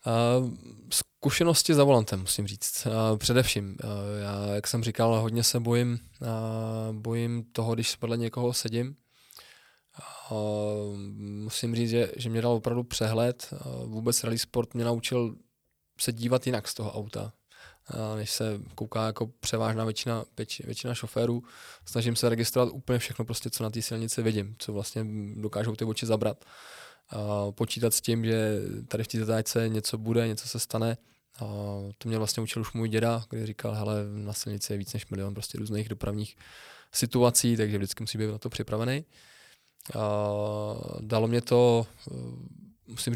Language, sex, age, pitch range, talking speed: Czech, male, 20-39, 105-120 Hz, 165 wpm